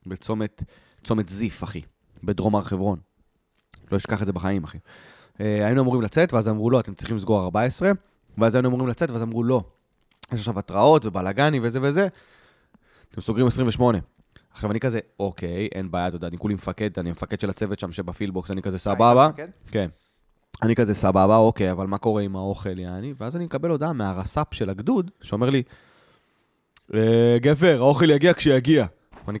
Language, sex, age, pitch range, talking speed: Hebrew, male, 20-39, 95-125 Hz, 160 wpm